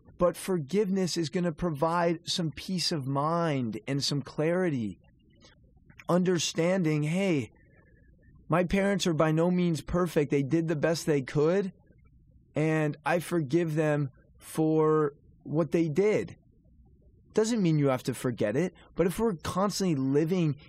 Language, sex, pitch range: English, male, 150-185 Hz